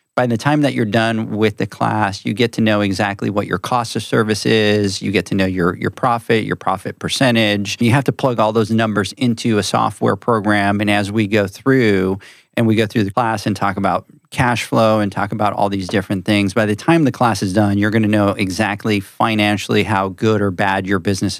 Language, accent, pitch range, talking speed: English, American, 100-115 Hz, 235 wpm